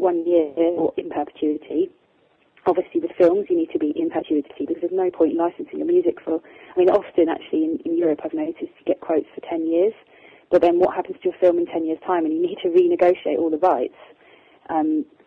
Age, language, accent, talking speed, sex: 30-49, English, British, 230 wpm, female